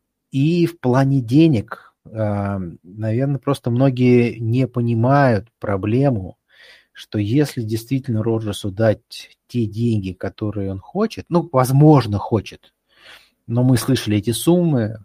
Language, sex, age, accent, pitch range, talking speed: Russian, male, 30-49, native, 110-135 Hz, 110 wpm